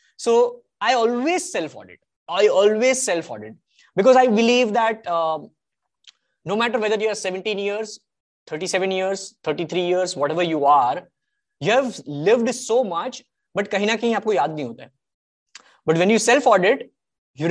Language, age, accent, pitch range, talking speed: English, 20-39, Indian, 185-250 Hz, 135 wpm